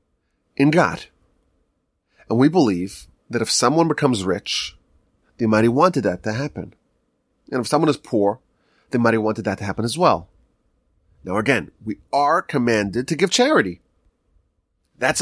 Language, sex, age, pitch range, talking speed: English, male, 30-49, 100-155 Hz, 160 wpm